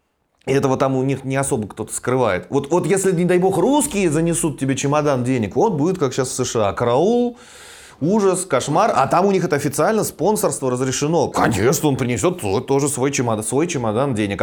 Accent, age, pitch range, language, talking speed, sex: native, 30-49, 115-150 Hz, Russian, 185 wpm, male